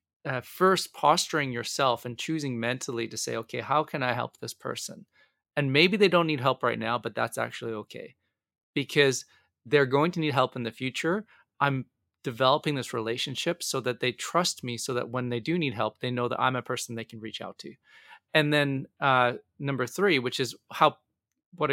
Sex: male